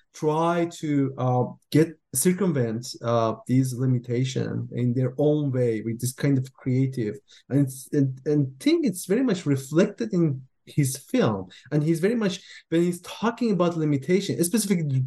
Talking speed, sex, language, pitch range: 155 wpm, male, English, 130-170 Hz